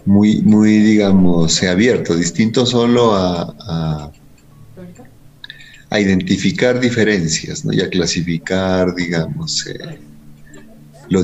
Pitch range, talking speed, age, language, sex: 75-100 Hz, 90 wpm, 50-69, Spanish, male